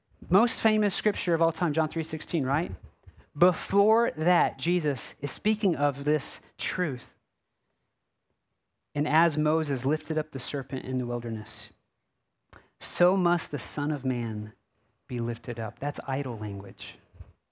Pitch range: 120-160 Hz